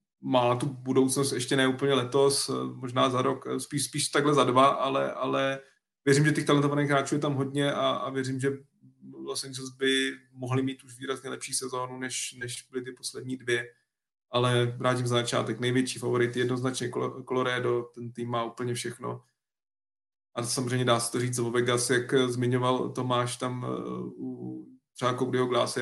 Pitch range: 120-130 Hz